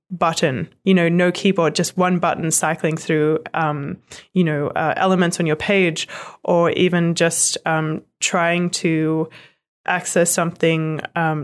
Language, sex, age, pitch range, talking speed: English, female, 20-39, 155-185 Hz, 140 wpm